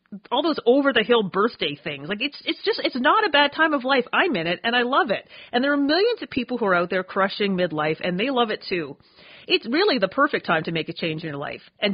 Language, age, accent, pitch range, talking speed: English, 40-59, American, 175-250 Hz, 275 wpm